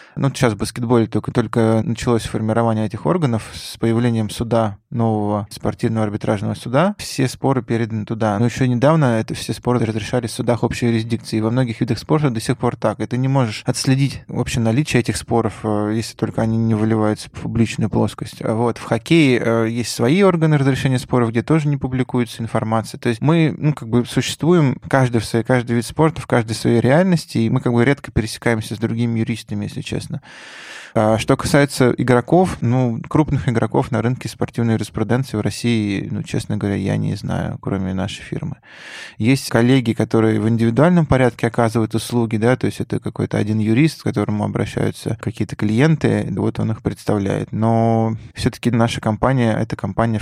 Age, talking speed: 20-39, 180 wpm